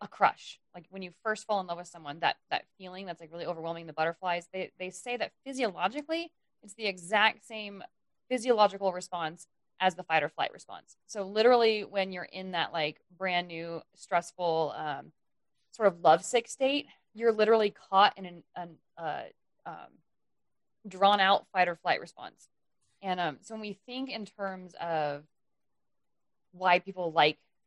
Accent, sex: American, female